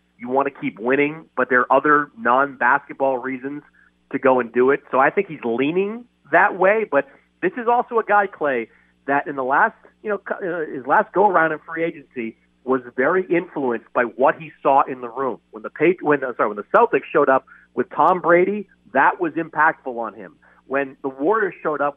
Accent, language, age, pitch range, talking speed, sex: American, English, 40-59, 130-195 Hz, 210 wpm, male